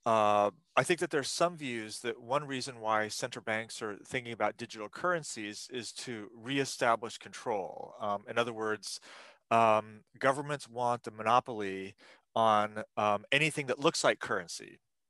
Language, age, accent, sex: English, 30-49, American, male